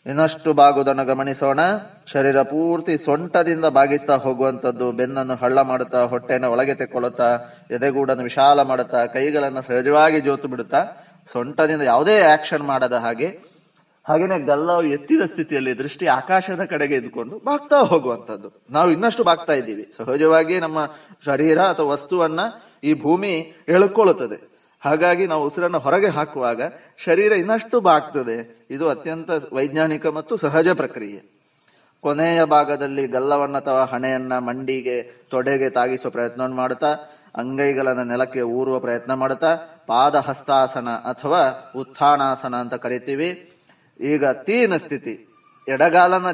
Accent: native